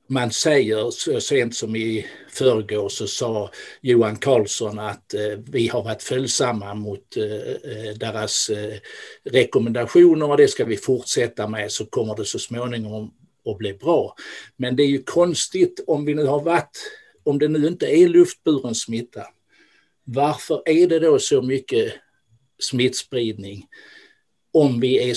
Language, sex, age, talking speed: Swedish, male, 60-79, 150 wpm